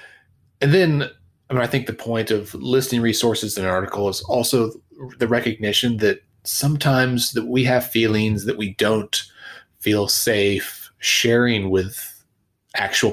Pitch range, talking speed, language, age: 100-130 Hz, 145 wpm, English, 30-49